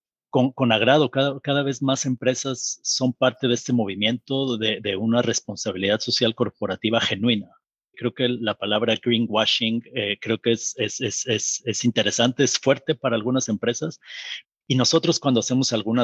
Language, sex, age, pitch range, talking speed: Spanish, male, 30-49, 110-125 Hz, 165 wpm